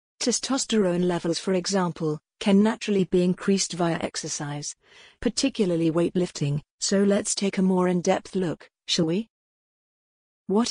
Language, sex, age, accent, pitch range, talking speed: English, female, 50-69, British, 165-210 Hz, 125 wpm